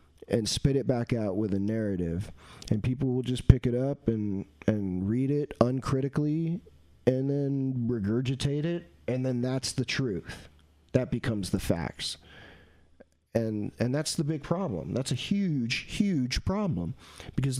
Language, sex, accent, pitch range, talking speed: English, male, American, 95-135 Hz, 155 wpm